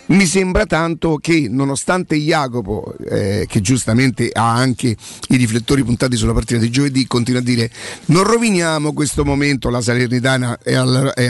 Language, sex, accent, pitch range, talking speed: Italian, male, native, 125-155 Hz, 155 wpm